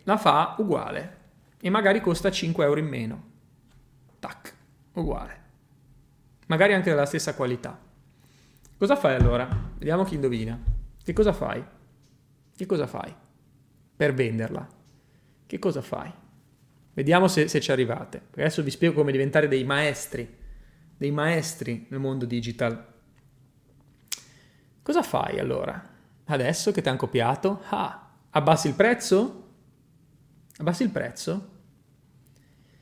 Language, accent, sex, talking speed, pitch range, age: Italian, native, male, 120 wpm, 130-165 Hz, 30-49